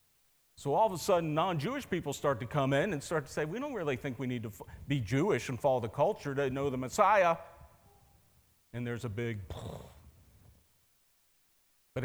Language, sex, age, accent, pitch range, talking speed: English, male, 50-69, American, 115-165 Hz, 190 wpm